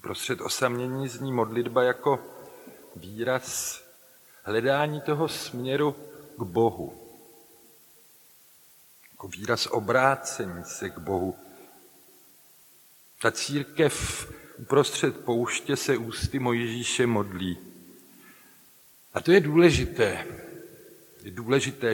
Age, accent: 50-69, native